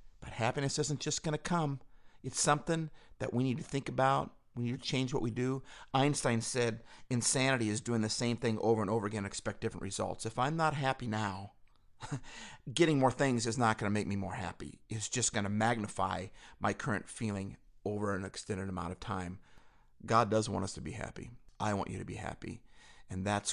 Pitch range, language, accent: 100-120 Hz, English, American